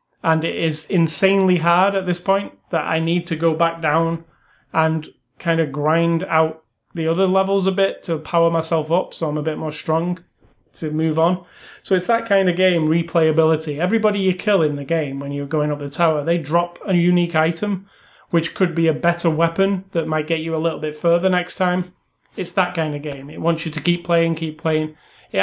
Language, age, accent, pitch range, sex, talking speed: English, 30-49, British, 155-185 Hz, male, 215 wpm